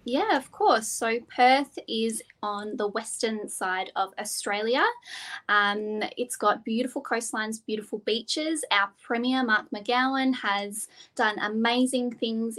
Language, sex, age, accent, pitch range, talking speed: English, female, 20-39, Australian, 205-245 Hz, 130 wpm